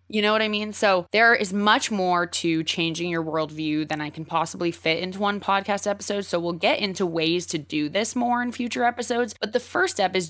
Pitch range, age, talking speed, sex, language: 160-210 Hz, 20-39, 235 wpm, female, English